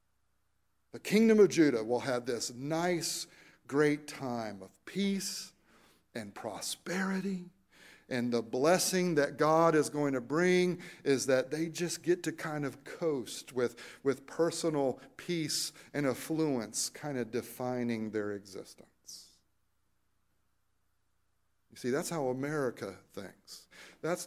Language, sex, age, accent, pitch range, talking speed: English, male, 50-69, American, 120-175 Hz, 125 wpm